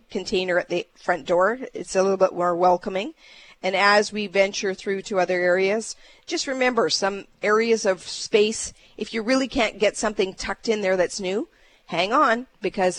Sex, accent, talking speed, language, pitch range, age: female, American, 180 wpm, English, 185-235 Hz, 50-69